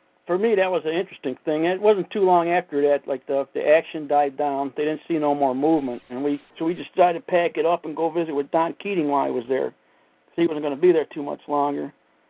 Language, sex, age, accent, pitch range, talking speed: English, male, 60-79, American, 135-175 Hz, 270 wpm